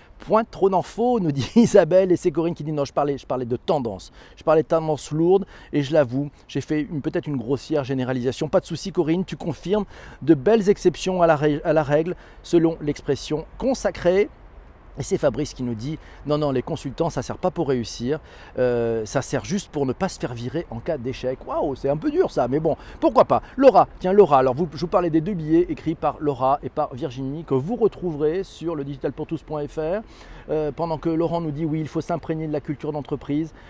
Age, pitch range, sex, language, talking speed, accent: 40-59, 140-180 Hz, male, French, 230 wpm, French